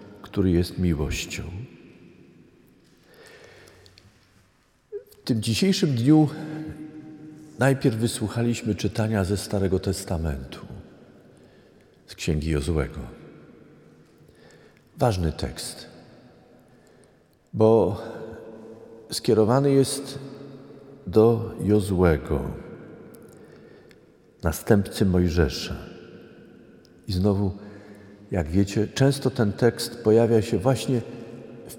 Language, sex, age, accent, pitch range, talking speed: Polish, male, 50-69, native, 95-130 Hz, 70 wpm